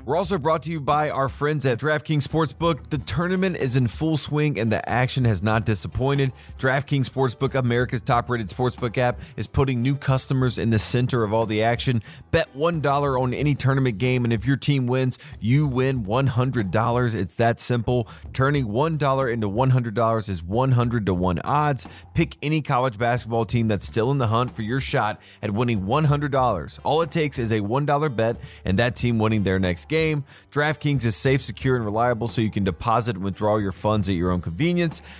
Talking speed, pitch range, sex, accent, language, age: 195 wpm, 110-140 Hz, male, American, English, 30-49